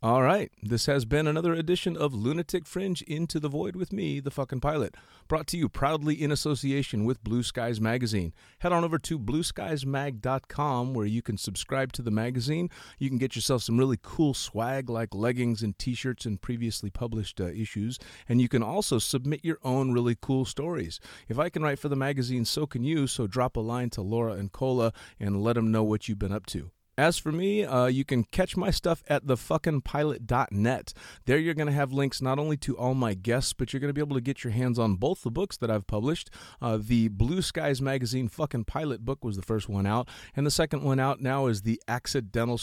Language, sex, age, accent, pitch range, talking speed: English, male, 30-49, American, 115-145 Hz, 220 wpm